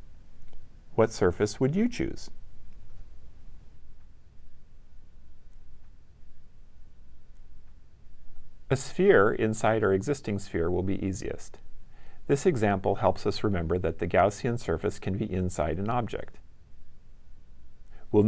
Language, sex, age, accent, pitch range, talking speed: English, male, 40-59, American, 85-110 Hz, 95 wpm